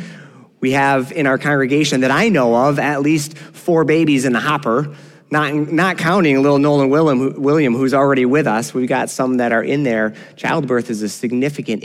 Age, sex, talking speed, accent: 30-49, male, 195 wpm, American